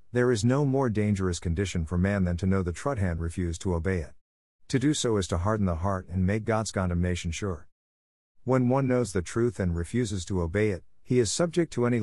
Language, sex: English, male